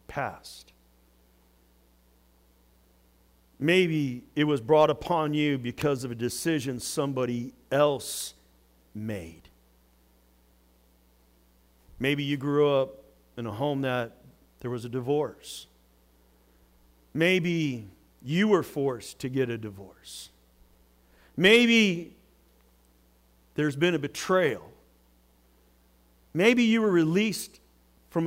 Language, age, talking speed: English, 50-69, 90 wpm